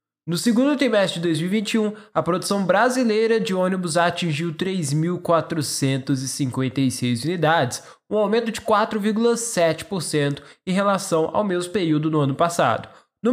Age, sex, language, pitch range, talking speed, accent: 10-29, male, Portuguese, 155-215 Hz, 115 wpm, Brazilian